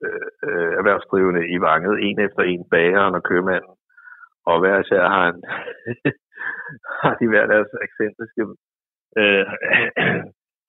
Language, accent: Danish, native